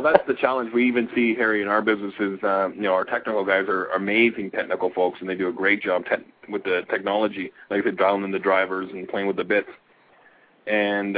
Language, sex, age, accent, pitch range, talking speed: English, male, 30-49, American, 95-110 Hz, 235 wpm